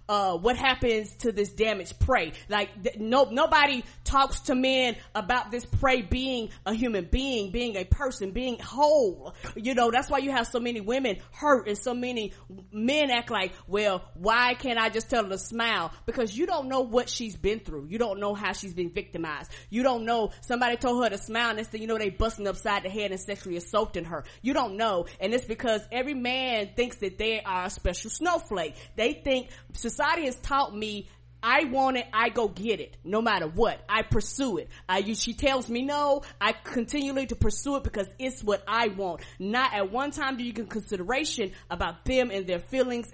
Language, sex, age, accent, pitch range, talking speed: English, female, 20-39, American, 205-255 Hz, 210 wpm